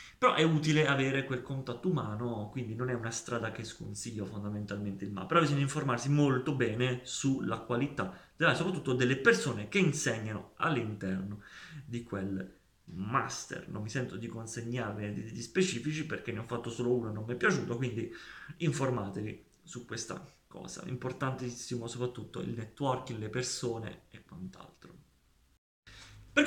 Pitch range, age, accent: 115-135 Hz, 30-49, native